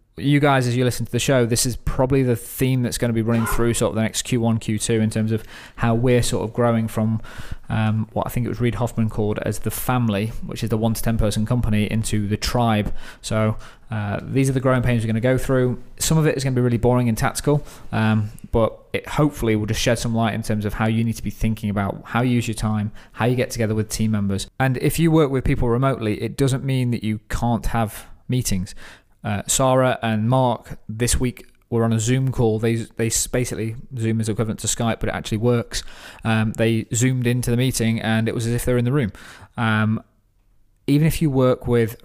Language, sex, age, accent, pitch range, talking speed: English, male, 20-39, British, 110-125 Hz, 245 wpm